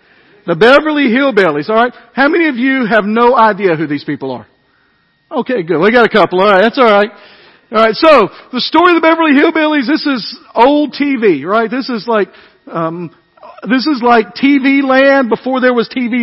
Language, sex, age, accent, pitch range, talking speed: English, male, 50-69, American, 225-295 Hz, 200 wpm